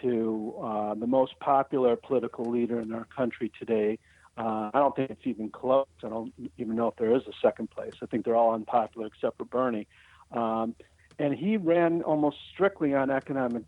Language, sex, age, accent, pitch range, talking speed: English, male, 50-69, American, 115-140 Hz, 195 wpm